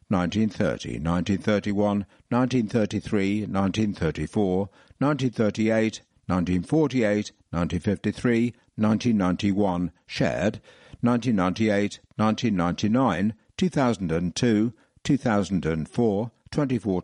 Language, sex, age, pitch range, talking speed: English, male, 60-79, 95-120 Hz, 45 wpm